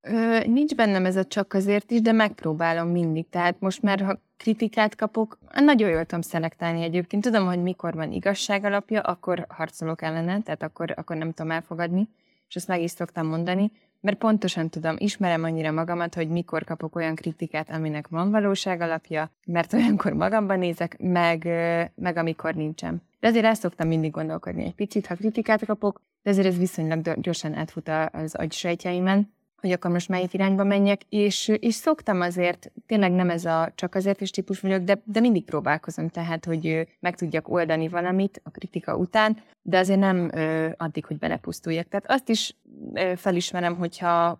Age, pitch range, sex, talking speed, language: 20-39, 165-205 Hz, female, 175 wpm, Hungarian